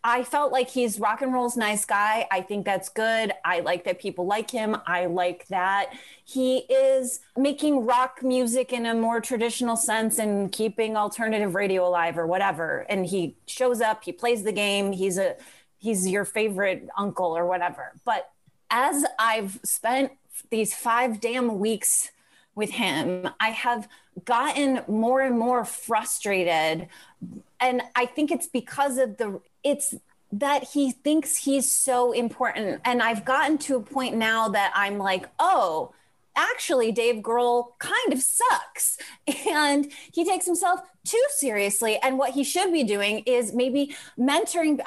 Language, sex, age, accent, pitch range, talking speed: English, female, 30-49, American, 200-260 Hz, 160 wpm